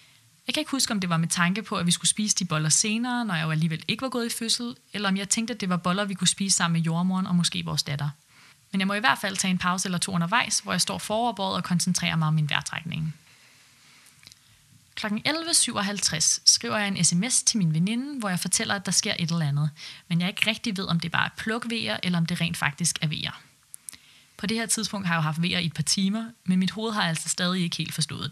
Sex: female